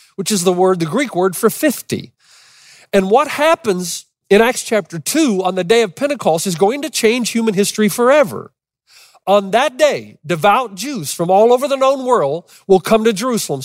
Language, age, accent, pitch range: English, 40-59, American, 175-240 Hz